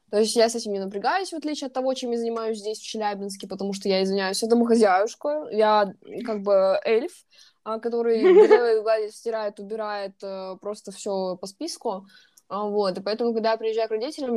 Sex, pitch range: female, 190-220 Hz